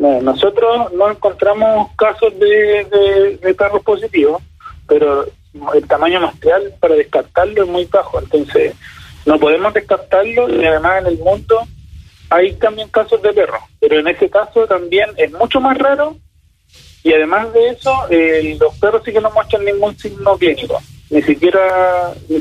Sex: male